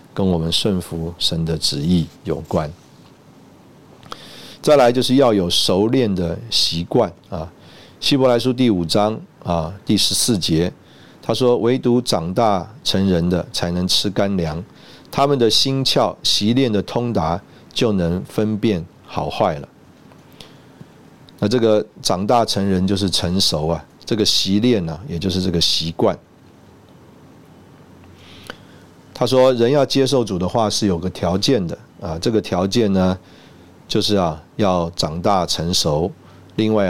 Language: Chinese